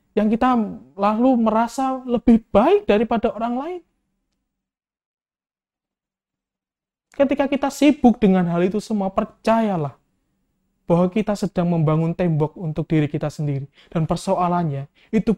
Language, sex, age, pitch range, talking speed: Indonesian, male, 20-39, 155-200 Hz, 115 wpm